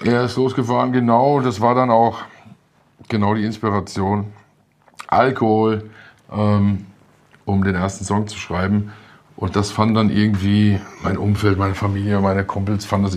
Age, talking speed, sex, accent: 50-69, 145 wpm, male, German